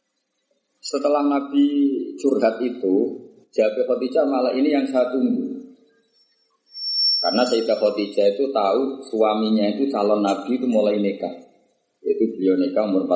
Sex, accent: male, native